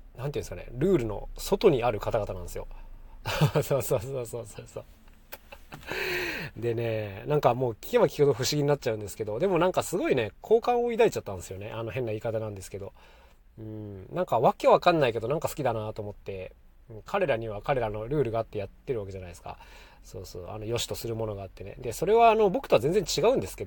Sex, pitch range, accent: male, 105-145 Hz, native